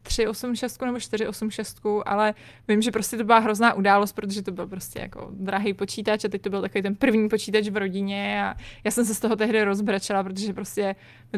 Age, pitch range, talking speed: 20-39, 215-265 Hz, 225 wpm